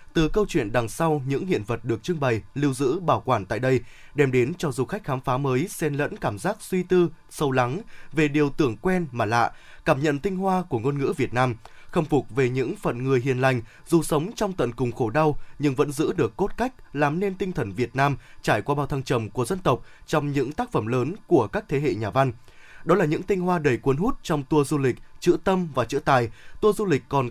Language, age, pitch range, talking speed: Vietnamese, 20-39, 130-175 Hz, 255 wpm